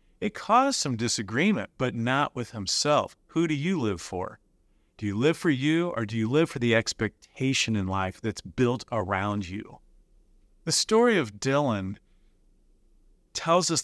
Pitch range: 115-160 Hz